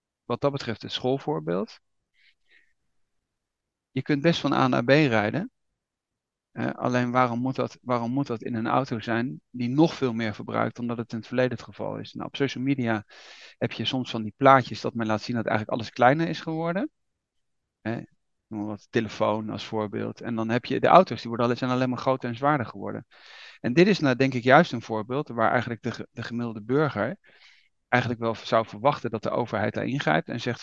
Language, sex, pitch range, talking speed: Dutch, male, 115-135 Hz, 205 wpm